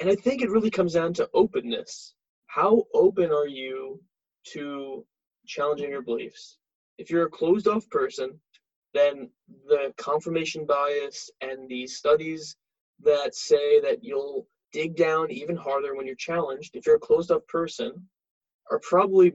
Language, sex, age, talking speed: English, male, 20-39, 145 wpm